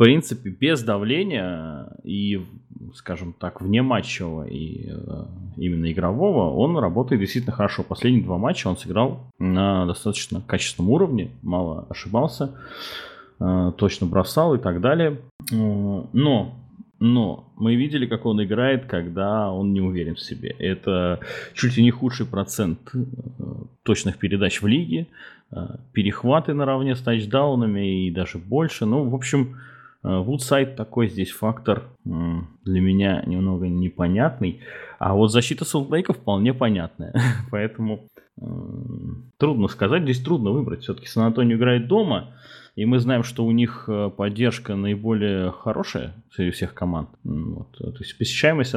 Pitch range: 95-125 Hz